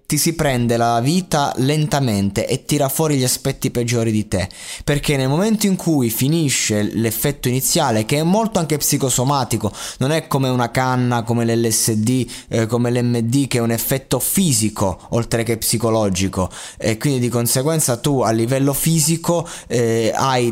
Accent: native